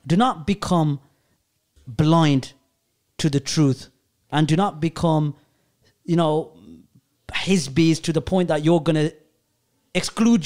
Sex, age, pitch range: male, 30-49, 120-185 Hz